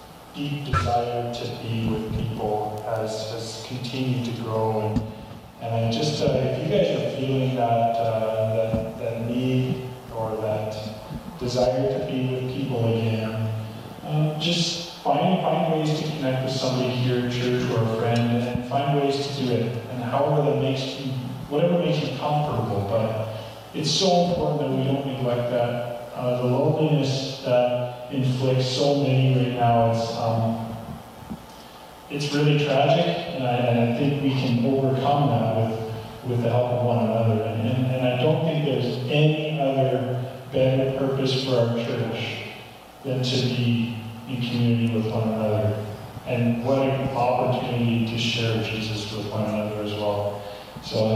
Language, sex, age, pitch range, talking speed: English, male, 30-49, 115-135 Hz, 165 wpm